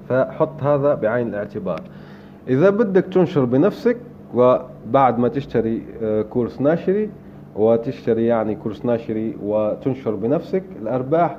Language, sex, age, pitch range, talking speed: Arabic, male, 30-49, 115-150 Hz, 105 wpm